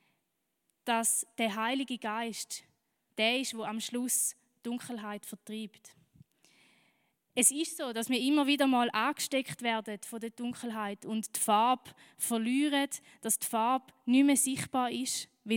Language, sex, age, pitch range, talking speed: German, female, 20-39, 215-250 Hz, 140 wpm